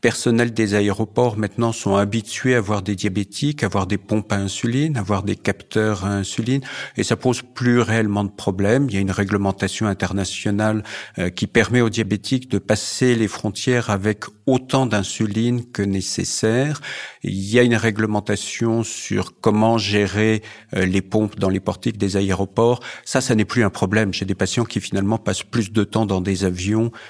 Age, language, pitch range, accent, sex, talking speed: 50-69, French, 105-125 Hz, French, male, 185 wpm